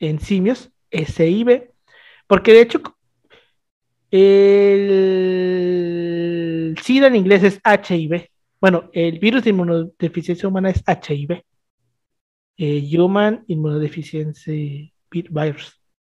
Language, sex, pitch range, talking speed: Spanish, male, 170-225 Hz, 95 wpm